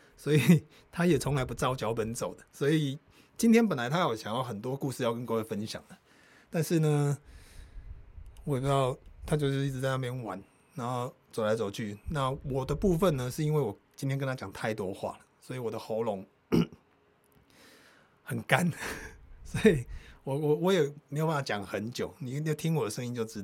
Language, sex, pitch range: Chinese, male, 115-155 Hz